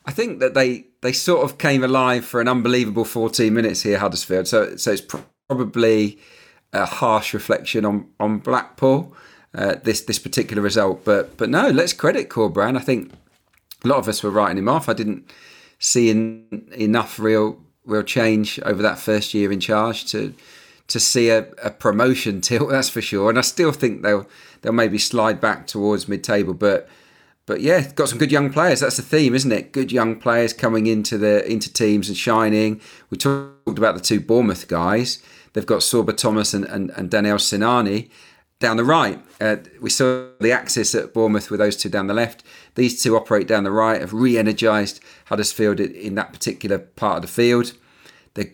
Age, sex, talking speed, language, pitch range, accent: 40-59, male, 195 wpm, English, 105-120 Hz, British